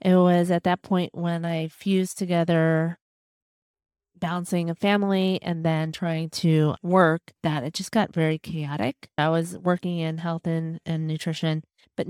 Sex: female